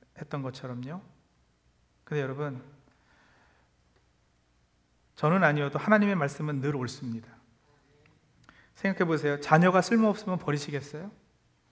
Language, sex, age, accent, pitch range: Korean, male, 40-59, native, 135-190 Hz